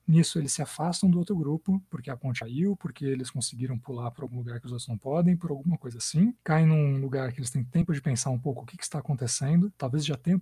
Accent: Brazilian